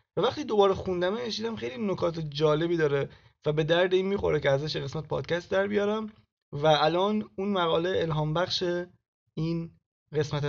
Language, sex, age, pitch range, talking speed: Persian, male, 20-39, 150-195 Hz, 155 wpm